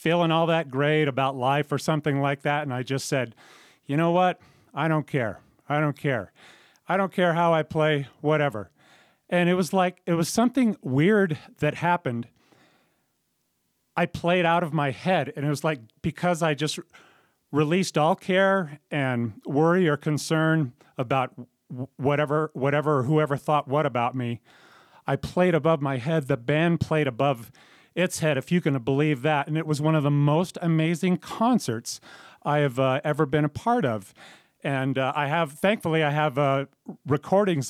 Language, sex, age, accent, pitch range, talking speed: English, male, 40-59, American, 135-170 Hz, 180 wpm